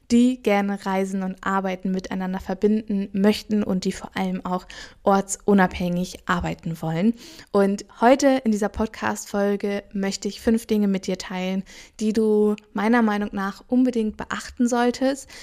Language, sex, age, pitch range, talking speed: German, female, 20-39, 195-225 Hz, 140 wpm